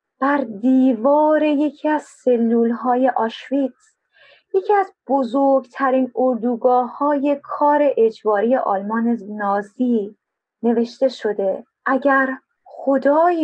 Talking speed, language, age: 85 wpm, Persian, 30-49